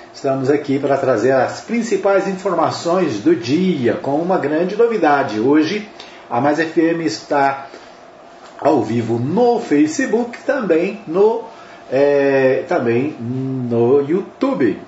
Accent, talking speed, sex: Brazilian, 105 wpm, male